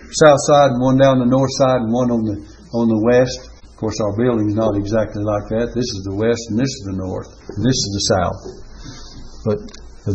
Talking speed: 235 wpm